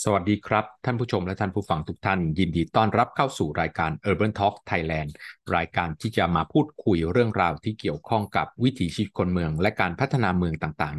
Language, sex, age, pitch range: Thai, male, 20-39, 85-110 Hz